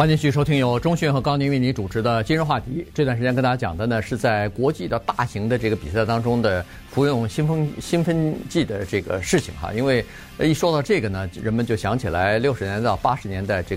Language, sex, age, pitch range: Chinese, male, 50-69, 95-130 Hz